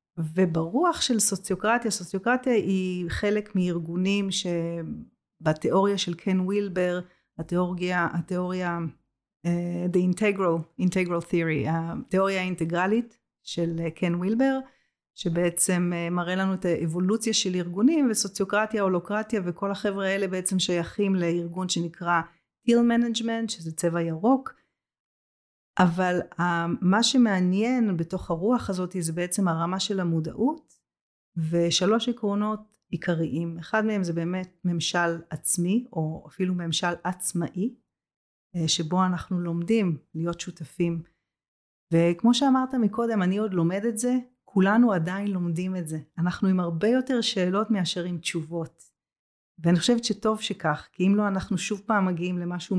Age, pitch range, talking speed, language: 30-49, 170-210 Hz, 120 wpm, Hebrew